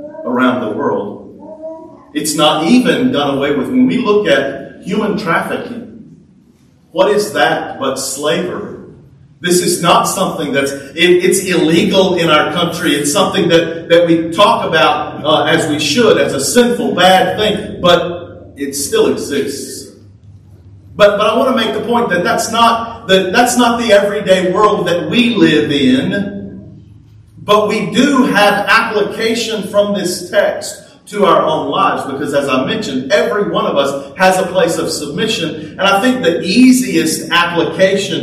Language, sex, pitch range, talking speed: English, male, 150-225 Hz, 160 wpm